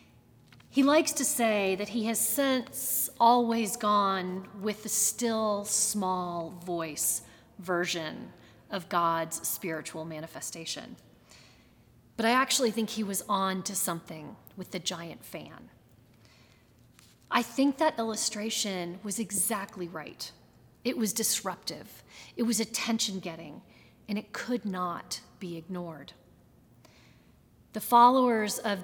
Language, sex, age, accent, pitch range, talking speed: English, female, 30-49, American, 175-225 Hz, 115 wpm